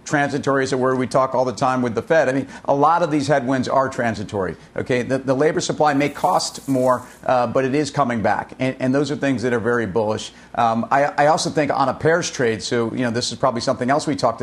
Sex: male